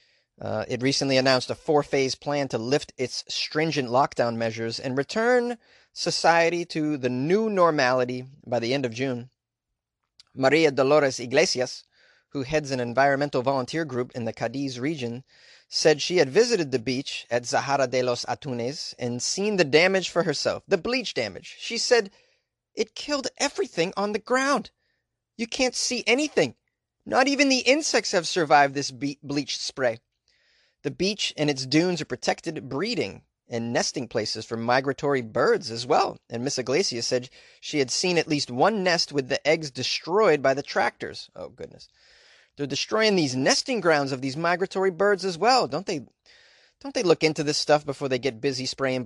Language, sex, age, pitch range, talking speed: English, male, 30-49, 130-175 Hz, 170 wpm